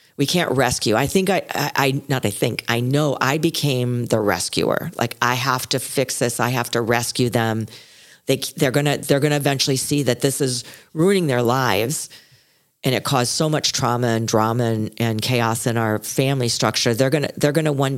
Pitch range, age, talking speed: 115-140 Hz, 40-59, 205 wpm